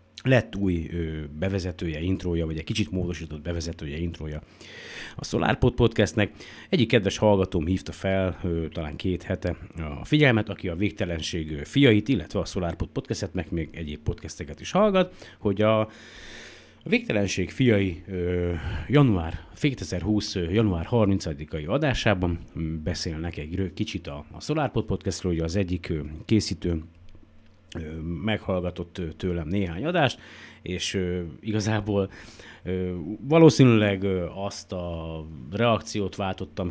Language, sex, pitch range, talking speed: Hungarian, male, 85-105 Hz, 110 wpm